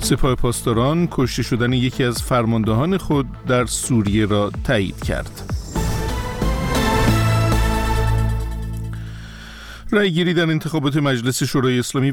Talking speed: 100 wpm